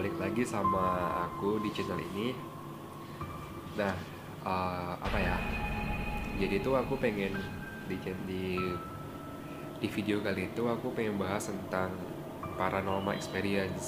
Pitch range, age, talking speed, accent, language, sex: 85-110 Hz, 20-39, 115 wpm, native, Indonesian, male